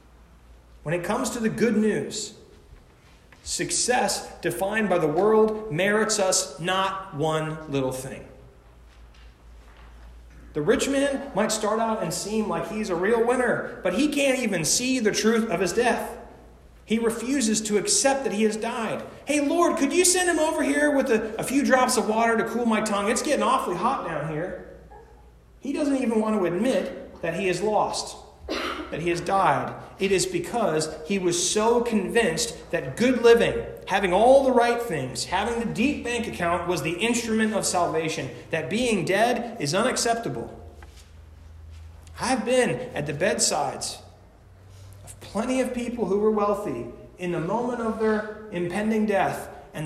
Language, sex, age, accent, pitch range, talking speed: English, male, 30-49, American, 135-230 Hz, 165 wpm